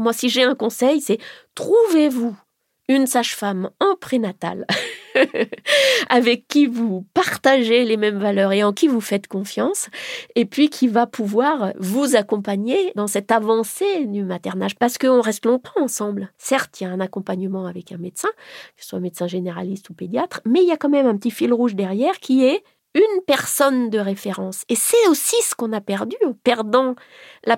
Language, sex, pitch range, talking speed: French, female, 200-255 Hz, 185 wpm